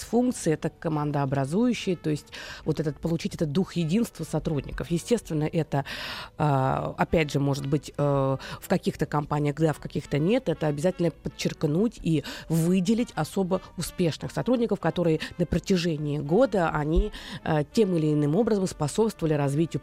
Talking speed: 125 wpm